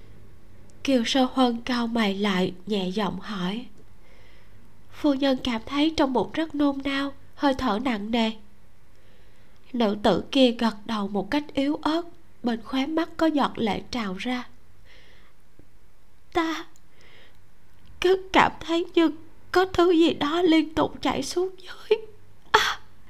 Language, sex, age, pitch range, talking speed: Vietnamese, female, 20-39, 215-290 Hz, 140 wpm